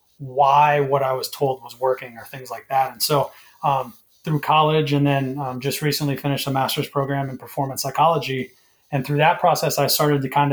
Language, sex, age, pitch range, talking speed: English, male, 30-49, 135-145 Hz, 205 wpm